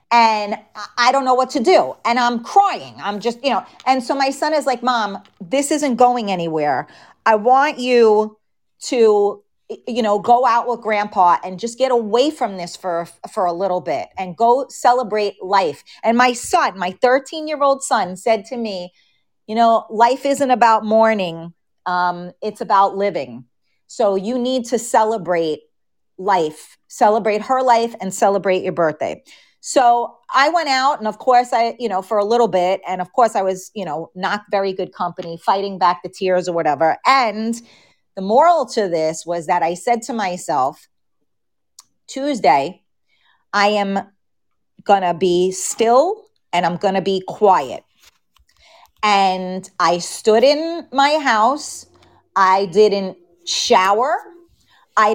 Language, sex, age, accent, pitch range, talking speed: English, female, 40-59, American, 185-250 Hz, 160 wpm